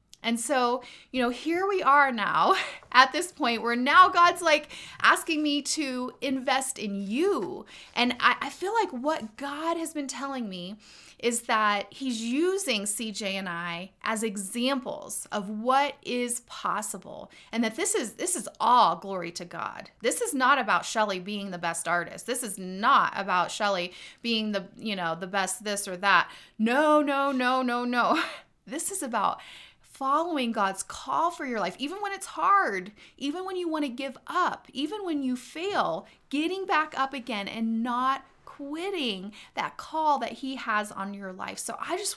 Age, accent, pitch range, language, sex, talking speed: 30-49, American, 210-300 Hz, English, female, 180 wpm